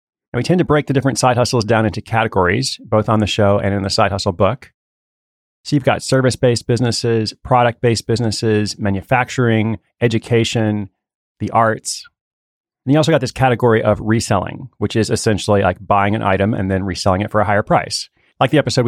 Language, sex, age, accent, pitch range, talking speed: English, male, 30-49, American, 100-125 Hz, 190 wpm